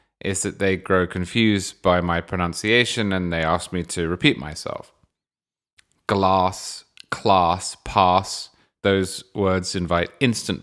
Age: 30-49